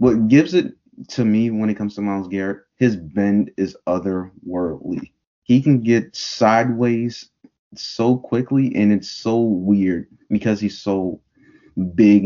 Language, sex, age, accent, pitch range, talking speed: English, male, 20-39, American, 90-110 Hz, 140 wpm